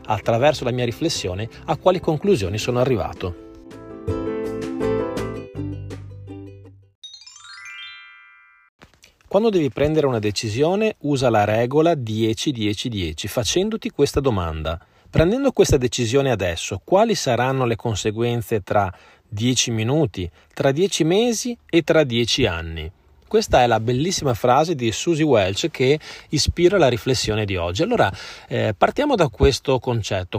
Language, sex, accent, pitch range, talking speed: Italian, male, native, 110-150 Hz, 115 wpm